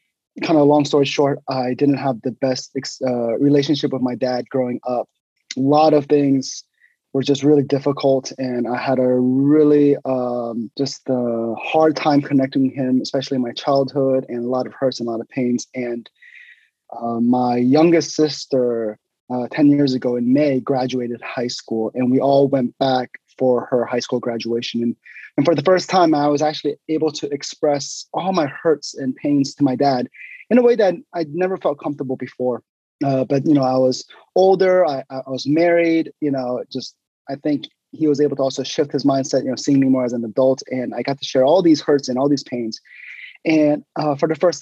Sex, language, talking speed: male, English, 205 wpm